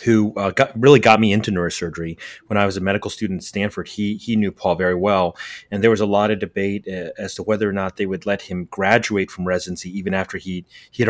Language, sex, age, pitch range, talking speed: English, male, 30-49, 100-120 Hz, 255 wpm